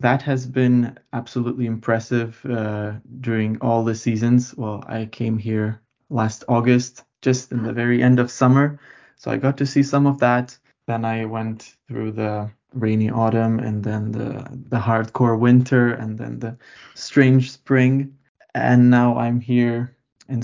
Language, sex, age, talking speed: Finnish, male, 20-39, 160 wpm